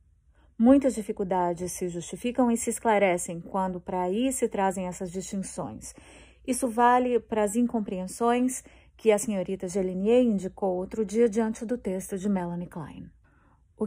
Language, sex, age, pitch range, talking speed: English, female, 30-49, 185-235 Hz, 145 wpm